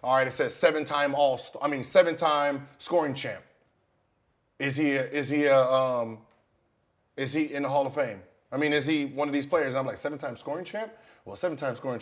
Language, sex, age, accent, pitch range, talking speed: English, male, 30-49, American, 120-180 Hz, 195 wpm